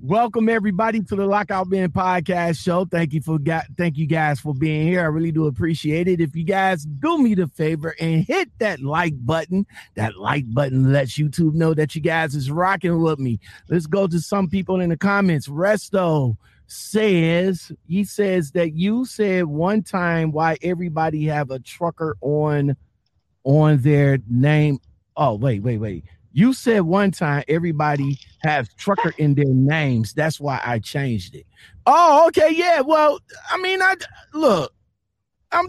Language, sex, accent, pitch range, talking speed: English, male, American, 145-210 Hz, 170 wpm